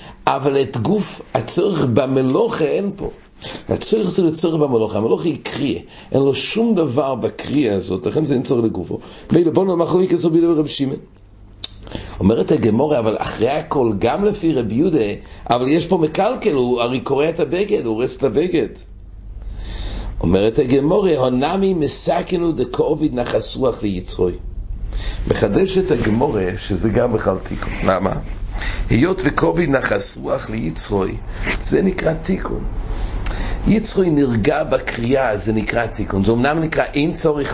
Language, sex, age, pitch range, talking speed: English, male, 60-79, 105-160 Hz, 135 wpm